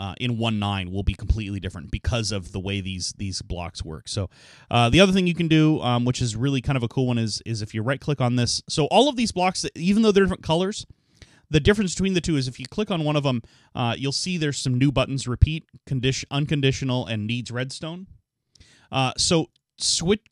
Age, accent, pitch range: 30-49, American, 110-150 Hz